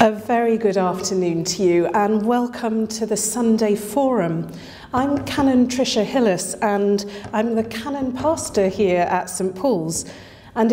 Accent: British